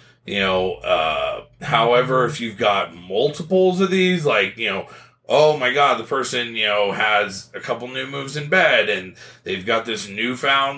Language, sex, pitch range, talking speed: English, male, 120-145 Hz, 180 wpm